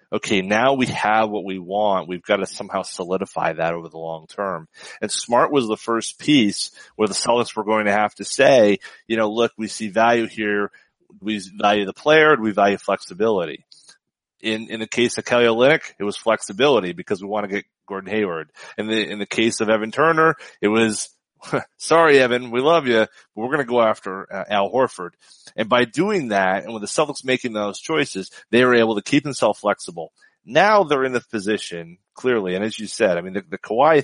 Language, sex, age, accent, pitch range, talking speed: English, male, 30-49, American, 100-135 Hz, 215 wpm